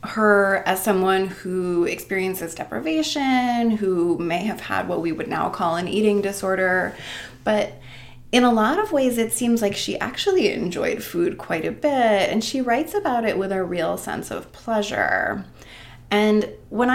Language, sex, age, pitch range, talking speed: English, female, 20-39, 195-255 Hz, 165 wpm